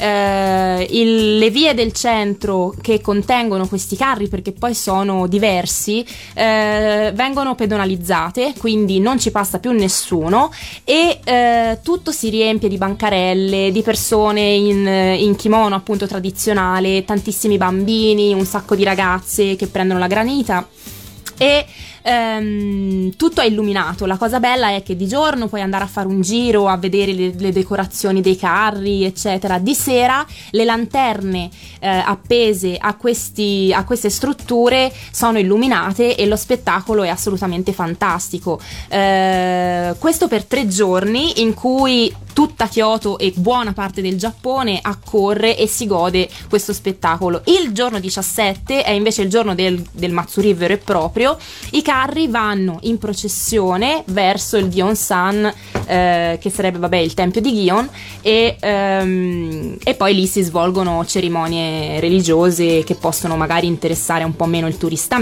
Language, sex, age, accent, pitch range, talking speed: Italian, female, 20-39, native, 185-225 Hz, 145 wpm